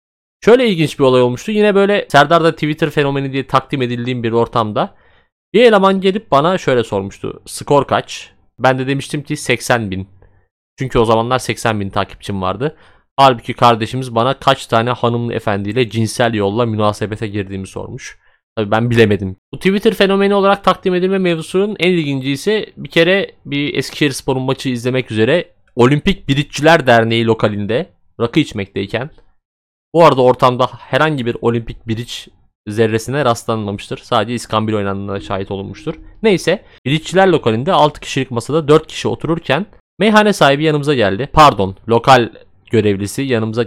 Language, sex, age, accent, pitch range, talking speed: Turkish, male, 30-49, native, 110-155 Hz, 145 wpm